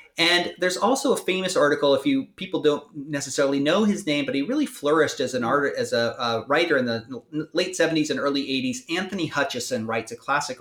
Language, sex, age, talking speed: English, male, 30-49, 210 wpm